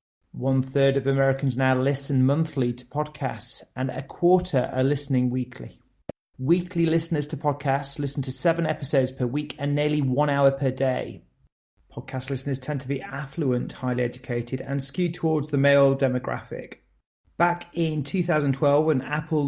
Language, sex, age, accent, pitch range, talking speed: English, male, 30-49, British, 135-160 Hz, 150 wpm